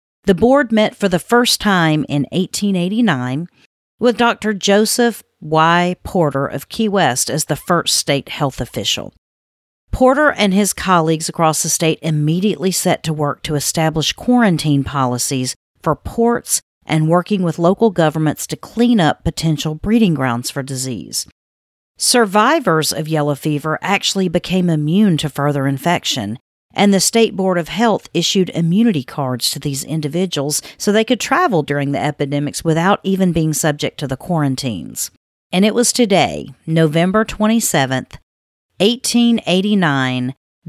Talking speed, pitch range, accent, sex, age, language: 140 wpm, 140-200 Hz, American, female, 40-59, English